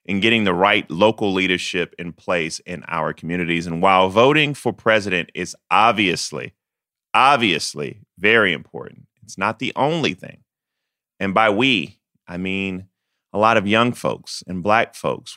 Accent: American